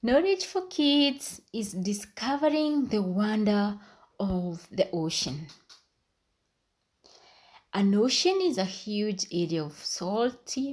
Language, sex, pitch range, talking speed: English, female, 170-250 Hz, 100 wpm